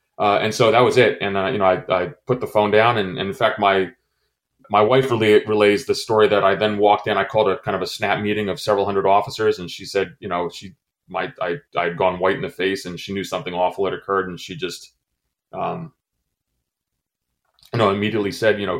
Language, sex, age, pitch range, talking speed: English, male, 30-49, 95-115 Hz, 245 wpm